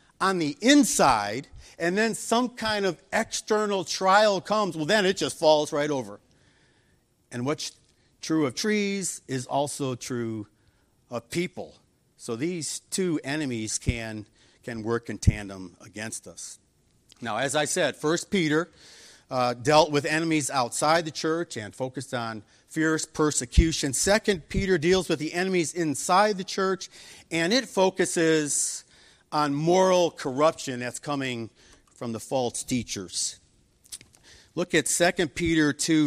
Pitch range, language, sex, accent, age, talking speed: 125-180 Hz, English, male, American, 50-69, 140 wpm